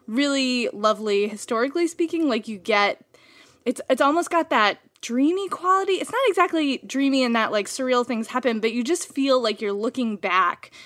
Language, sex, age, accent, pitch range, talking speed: English, female, 20-39, American, 215-275 Hz, 175 wpm